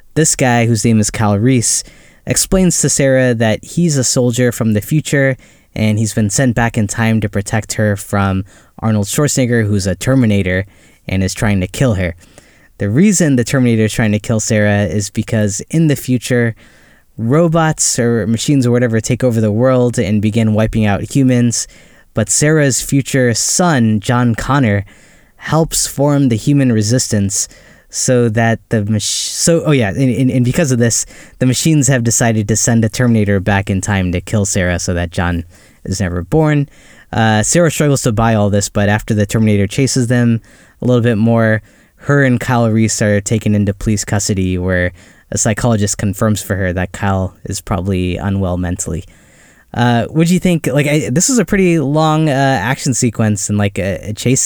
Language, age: English, 10-29